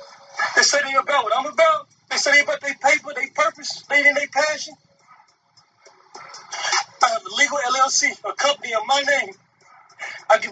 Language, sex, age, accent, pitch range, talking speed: English, male, 30-49, American, 265-325 Hz, 170 wpm